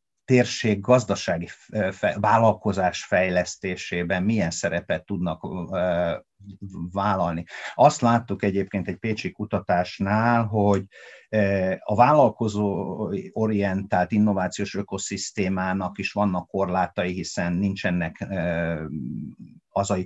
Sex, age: male, 50-69